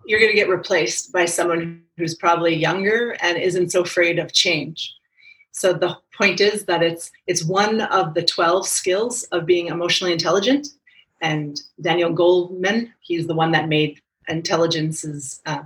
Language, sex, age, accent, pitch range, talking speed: English, female, 30-49, American, 175-215 Hz, 160 wpm